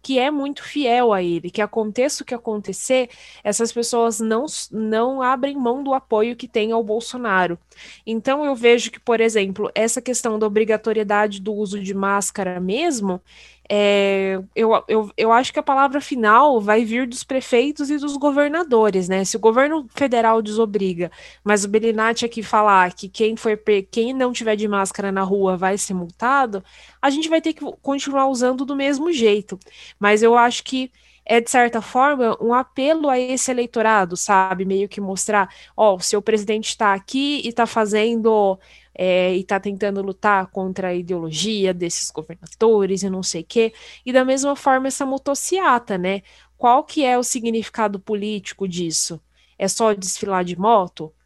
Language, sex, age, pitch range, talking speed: Portuguese, female, 20-39, 200-260 Hz, 175 wpm